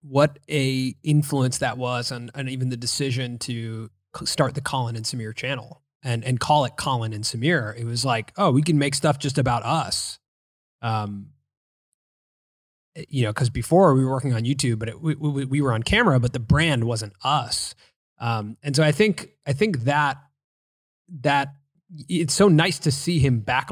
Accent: American